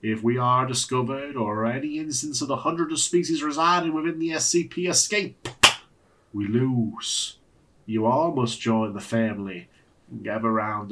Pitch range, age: 110-160 Hz, 30-49